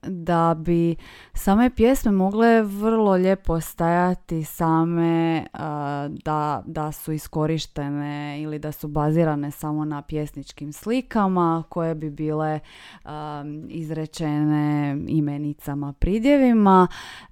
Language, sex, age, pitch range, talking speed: Croatian, female, 20-39, 155-180 Hz, 95 wpm